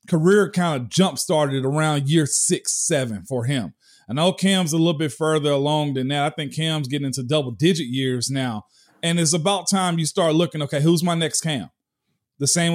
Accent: American